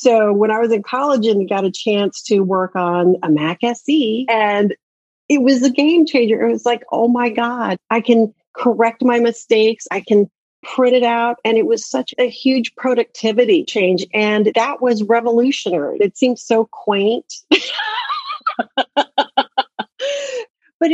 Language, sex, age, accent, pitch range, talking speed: English, female, 40-59, American, 190-245 Hz, 160 wpm